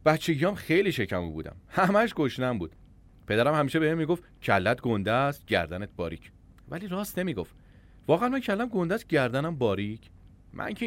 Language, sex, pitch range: Persian, male, 90-150 Hz